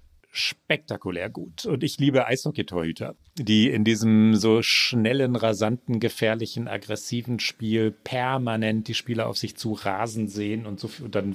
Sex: male